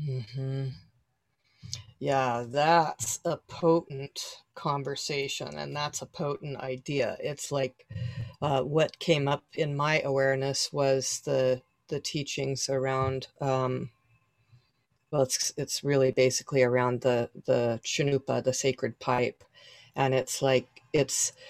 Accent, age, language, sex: American, 40-59, English, female